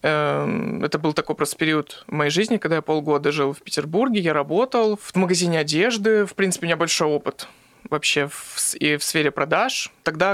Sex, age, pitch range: male, 20-39, 155-185 Hz